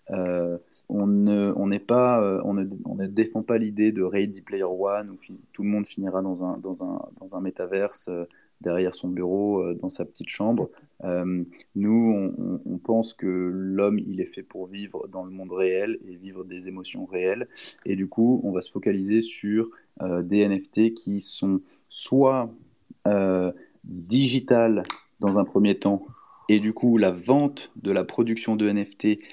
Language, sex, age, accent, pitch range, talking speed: French, male, 20-39, French, 95-110 Hz, 185 wpm